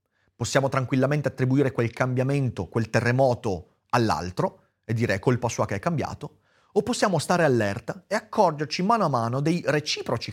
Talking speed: 150 wpm